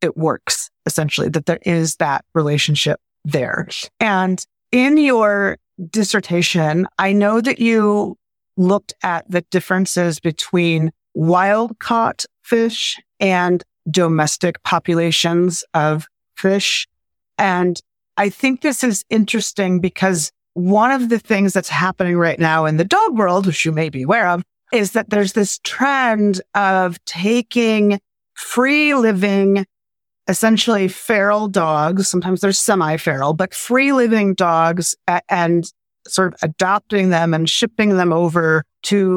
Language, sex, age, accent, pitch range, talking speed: English, female, 30-49, American, 170-205 Hz, 125 wpm